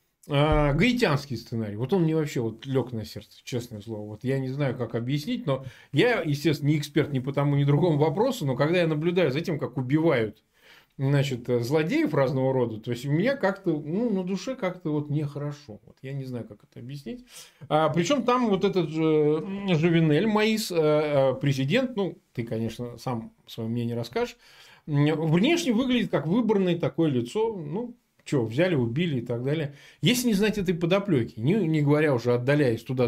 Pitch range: 120-170 Hz